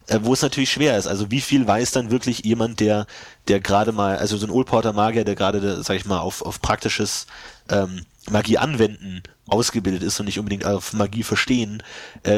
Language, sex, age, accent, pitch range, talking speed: German, male, 30-49, German, 100-120 Hz, 200 wpm